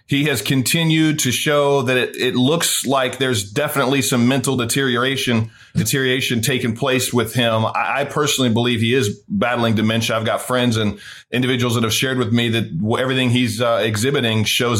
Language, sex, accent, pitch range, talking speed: English, male, American, 115-140 Hz, 175 wpm